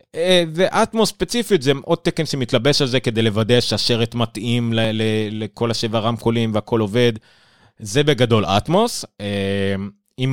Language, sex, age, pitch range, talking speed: Hebrew, male, 30-49, 100-135 Hz, 120 wpm